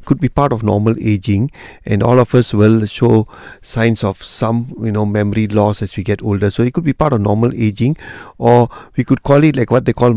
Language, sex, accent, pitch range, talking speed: English, male, Indian, 105-125 Hz, 235 wpm